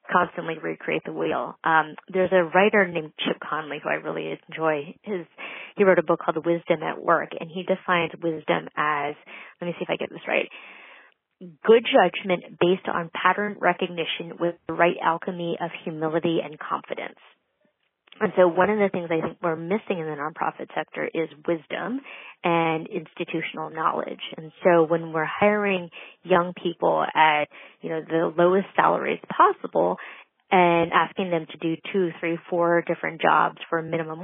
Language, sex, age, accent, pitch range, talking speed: English, female, 30-49, American, 160-185 Hz, 170 wpm